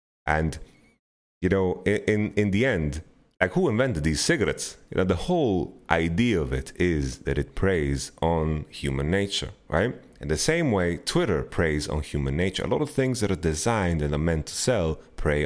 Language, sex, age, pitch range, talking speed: English, male, 30-49, 70-95 Hz, 195 wpm